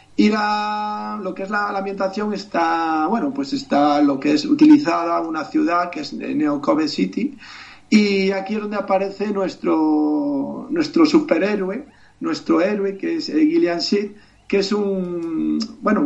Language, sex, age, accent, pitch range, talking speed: Spanish, male, 40-59, Spanish, 190-280 Hz, 150 wpm